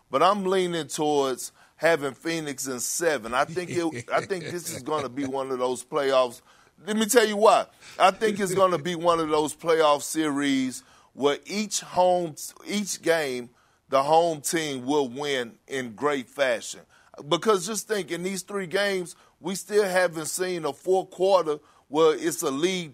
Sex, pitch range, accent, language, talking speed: male, 145-185 Hz, American, English, 175 wpm